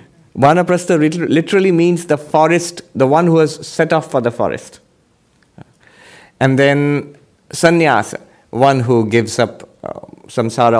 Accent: Indian